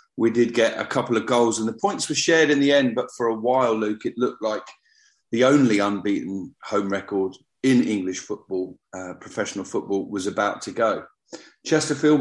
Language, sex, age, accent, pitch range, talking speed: English, male, 40-59, British, 100-140 Hz, 190 wpm